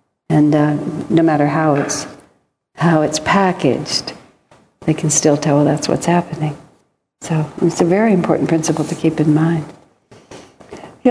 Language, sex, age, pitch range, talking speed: English, female, 60-79, 150-195 Hz, 150 wpm